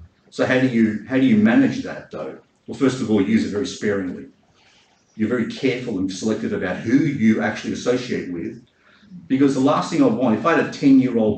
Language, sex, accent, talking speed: English, male, Australian, 210 wpm